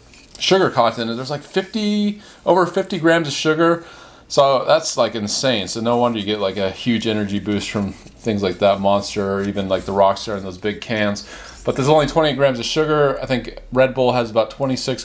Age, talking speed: 30-49, 210 wpm